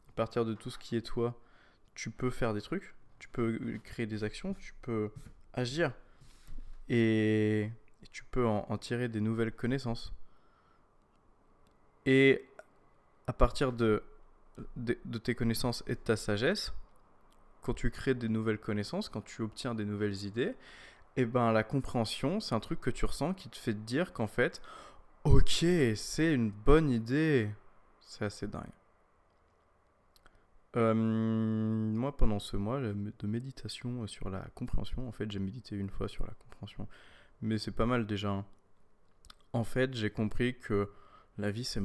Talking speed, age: 160 wpm, 20-39